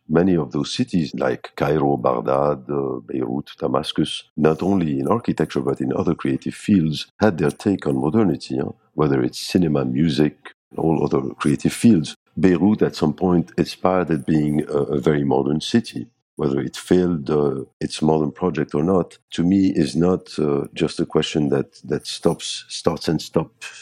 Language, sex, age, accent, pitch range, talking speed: English, male, 50-69, French, 75-90 Hz, 170 wpm